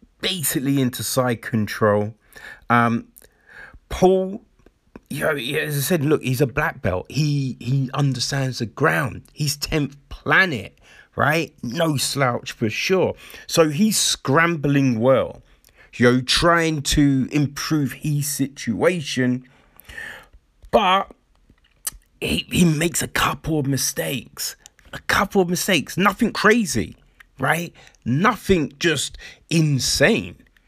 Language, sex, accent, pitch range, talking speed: English, male, British, 130-160 Hz, 115 wpm